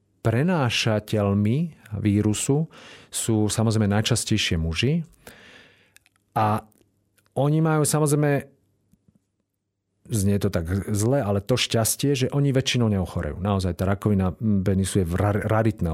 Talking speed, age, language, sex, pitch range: 100 wpm, 40-59, Slovak, male, 95-115 Hz